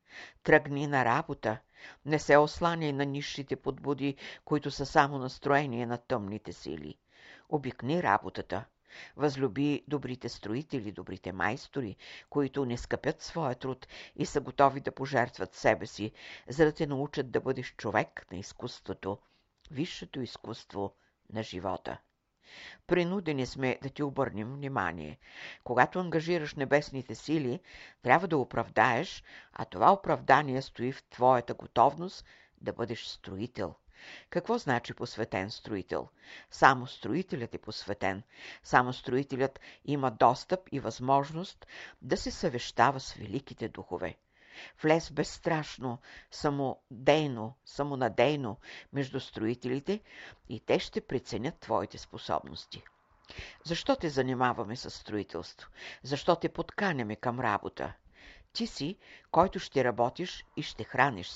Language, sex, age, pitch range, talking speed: Bulgarian, female, 60-79, 120-150 Hz, 120 wpm